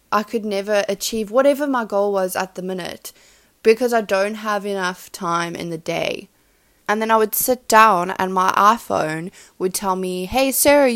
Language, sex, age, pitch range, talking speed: English, female, 20-39, 180-235 Hz, 185 wpm